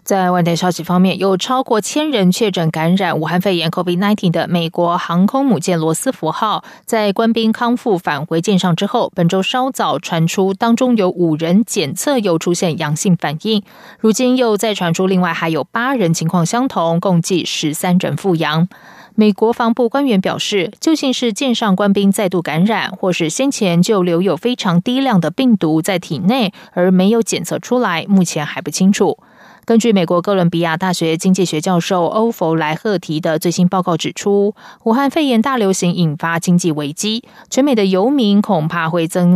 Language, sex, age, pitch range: German, female, 20-39, 170-220 Hz